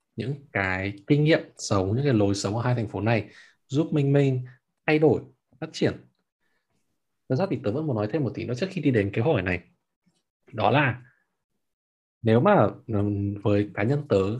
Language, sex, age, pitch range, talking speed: Vietnamese, male, 20-39, 100-140 Hz, 195 wpm